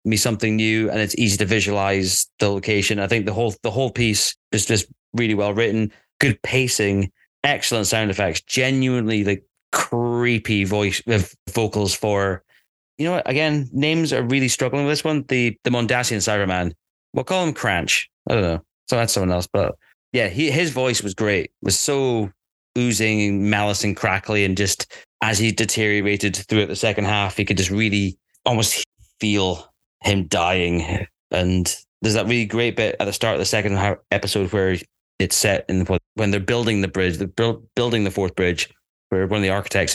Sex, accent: male, British